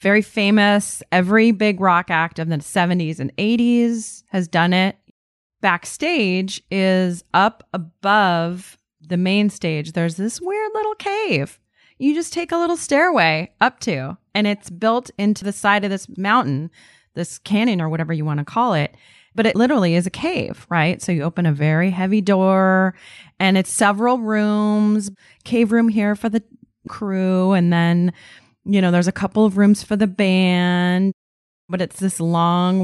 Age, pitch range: 30-49, 170-210 Hz